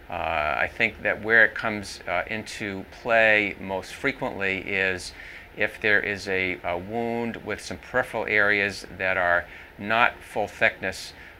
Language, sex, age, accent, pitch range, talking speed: English, male, 40-59, American, 85-105 Hz, 145 wpm